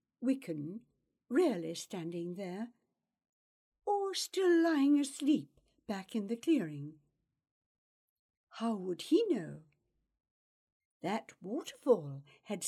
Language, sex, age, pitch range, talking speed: English, female, 60-79, 175-290 Hz, 90 wpm